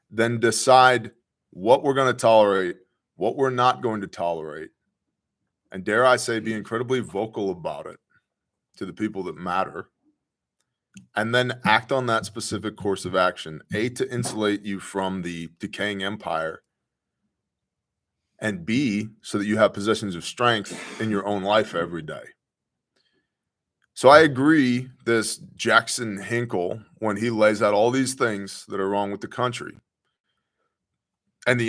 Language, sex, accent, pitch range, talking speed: English, male, American, 100-120 Hz, 150 wpm